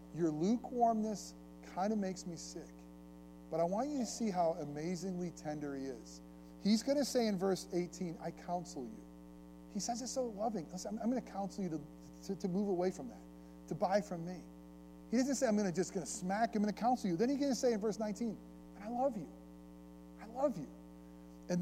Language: English